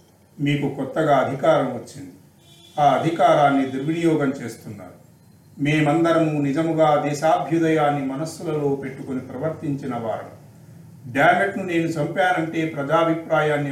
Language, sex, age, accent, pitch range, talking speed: Telugu, male, 40-59, native, 130-160 Hz, 85 wpm